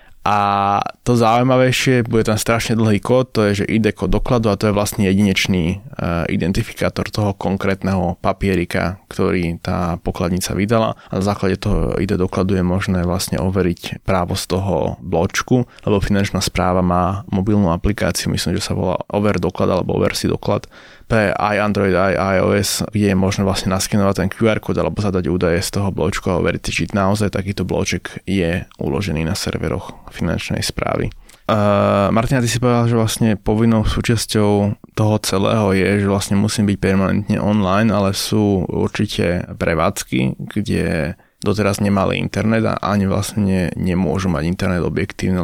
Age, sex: 20-39, male